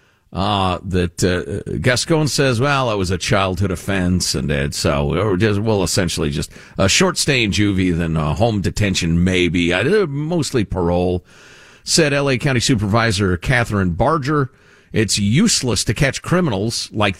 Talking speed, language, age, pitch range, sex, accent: 160 wpm, English, 50-69, 95-135 Hz, male, American